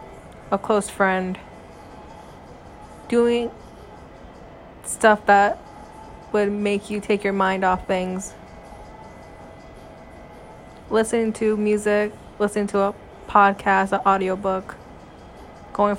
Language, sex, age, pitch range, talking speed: English, female, 20-39, 195-220 Hz, 90 wpm